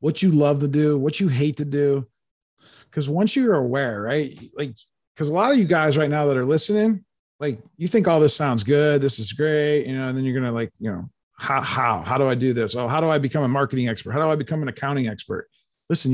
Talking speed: 255 wpm